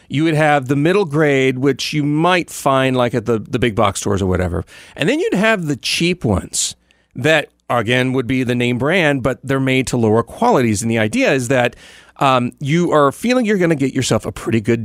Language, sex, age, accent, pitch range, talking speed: English, male, 40-59, American, 115-160 Hz, 225 wpm